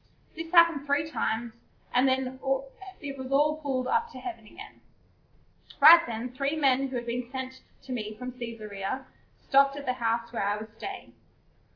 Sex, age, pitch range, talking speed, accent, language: female, 10-29, 230-275 Hz, 175 wpm, Australian, English